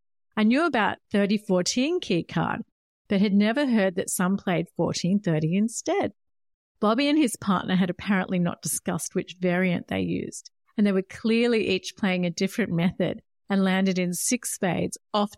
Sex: female